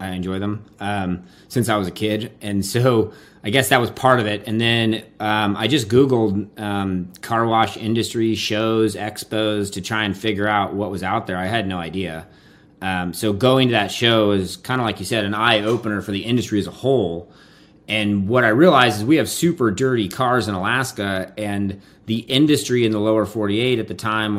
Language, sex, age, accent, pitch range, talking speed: English, male, 30-49, American, 90-110 Hz, 210 wpm